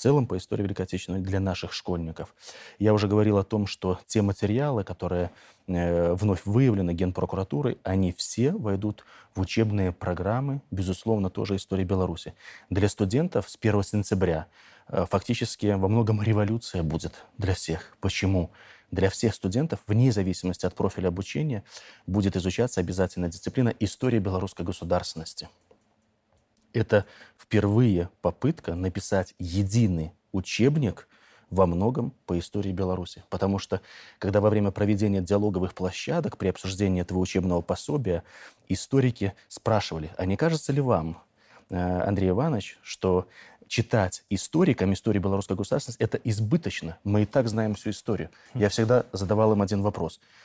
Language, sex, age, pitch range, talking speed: Russian, male, 20-39, 90-110 Hz, 135 wpm